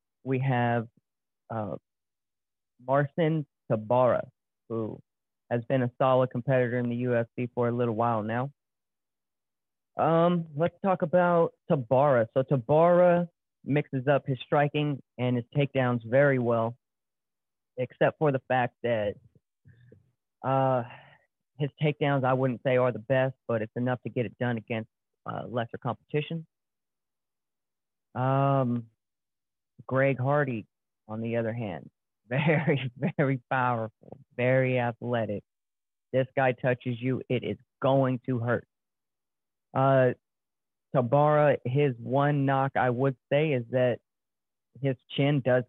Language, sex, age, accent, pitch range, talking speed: English, male, 30-49, American, 120-140 Hz, 125 wpm